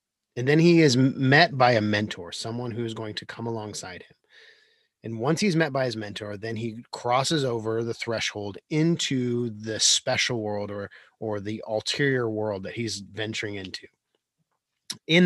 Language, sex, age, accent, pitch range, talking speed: English, male, 30-49, American, 110-135 Hz, 170 wpm